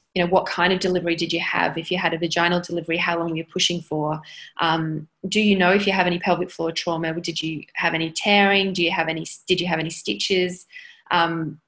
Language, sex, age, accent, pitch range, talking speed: English, female, 20-39, Australian, 165-190 Hz, 240 wpm